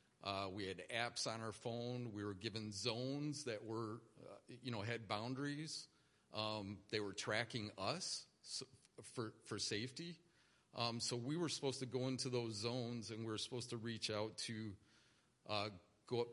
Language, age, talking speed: English, 40-59, 175 wpm